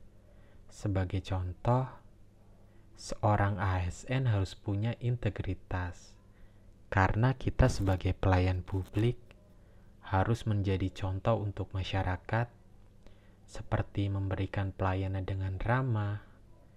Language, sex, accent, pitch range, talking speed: Indonesian, male, native, 95-105 Hz, 80 wpm